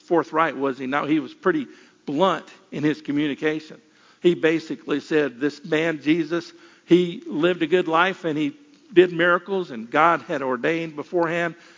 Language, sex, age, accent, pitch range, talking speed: English, male, 50-69, American, 155-185 Hz, 160 wpm